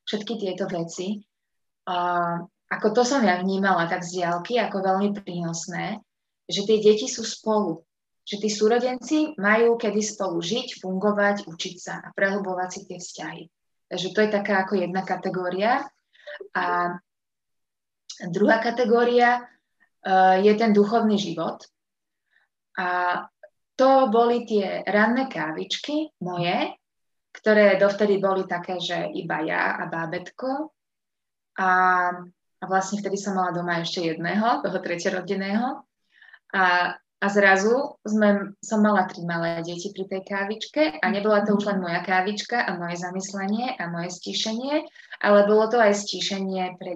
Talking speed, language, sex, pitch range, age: 135 wpm, Slovak, female, 180-215 Hz, 20-39